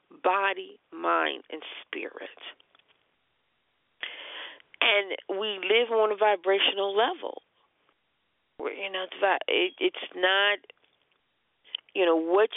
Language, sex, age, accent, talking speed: English, female, 40-59, American, 85 wpm